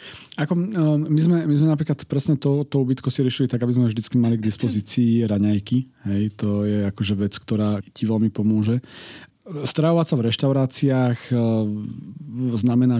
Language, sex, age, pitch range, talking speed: Slovak, male, 40-59, 110-125 Hz, 165 wpm